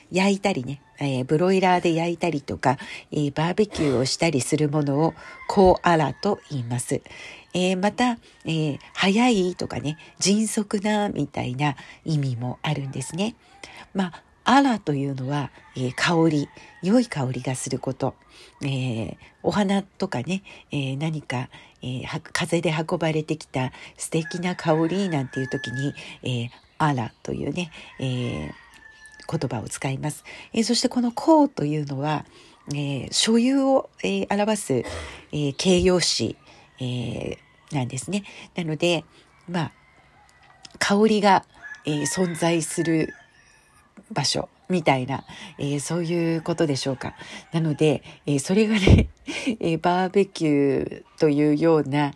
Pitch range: 140-190 Hz